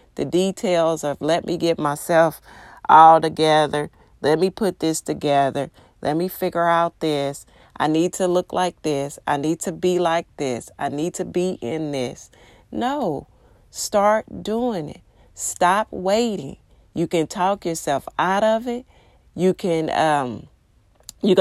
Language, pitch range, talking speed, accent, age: English, 155-190 Hz, 150 wpm, American, 40-59